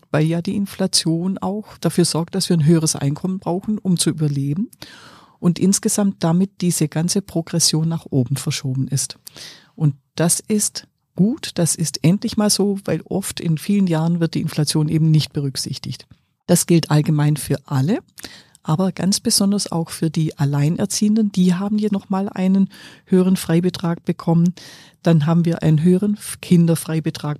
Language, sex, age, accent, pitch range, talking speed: German, female, 50-69, German, 150-185 Hz, 160 wpm